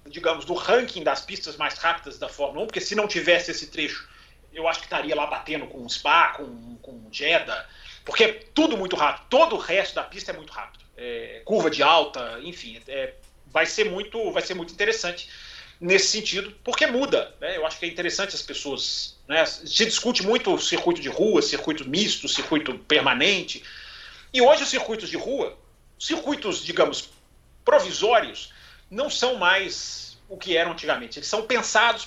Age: 40-59